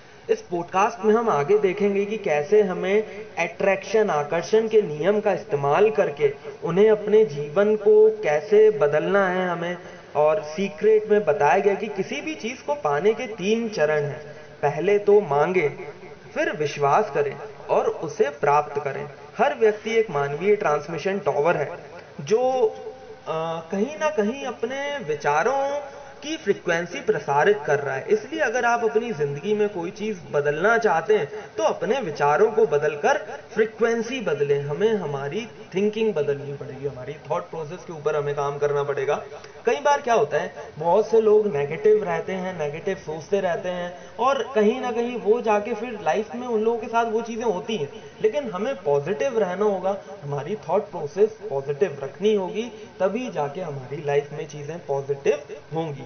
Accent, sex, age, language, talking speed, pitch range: native, male, 30-49, Hindi, 165 wpm, 150-225 Hz